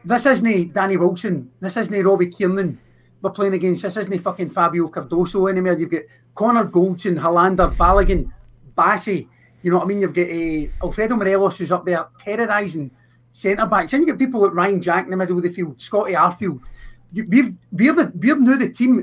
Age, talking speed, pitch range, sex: 30-49, 195 wpm, 175-220 Hz, male